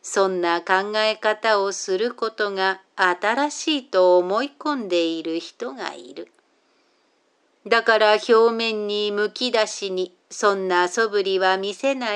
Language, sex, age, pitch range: Japanese, female, 50-69, 185-235 Hz